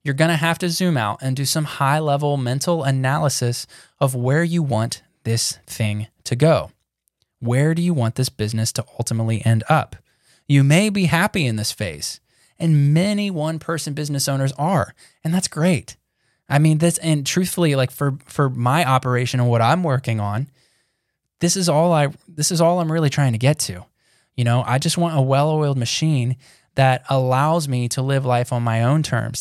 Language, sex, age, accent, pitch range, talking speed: English, male, 10-29, American, 120-150 Hz, 195 wpm